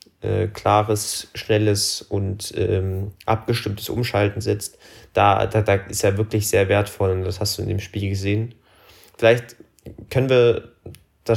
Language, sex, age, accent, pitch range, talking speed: German, male, 20-39, German, 100-115 Hz, 150 wpm